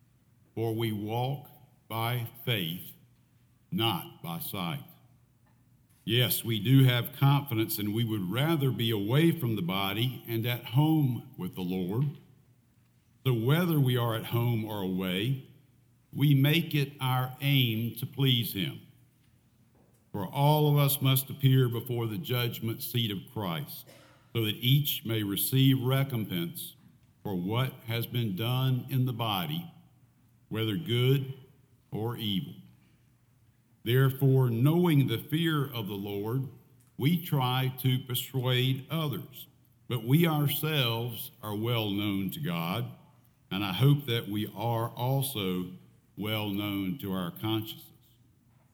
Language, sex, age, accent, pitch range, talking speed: English, male, 60-79, American, 115-140 Hz, 130 wpm